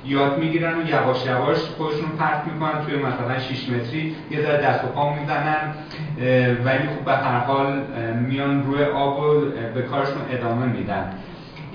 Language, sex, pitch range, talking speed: Persian, male, 130-170 Hz, 155 wpm